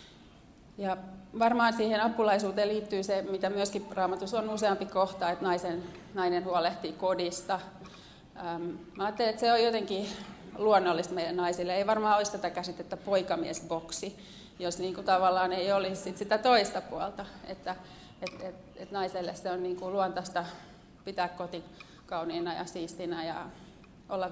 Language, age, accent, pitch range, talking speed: Finnish, 30-49, native, 180-205 Hz, 145 wpm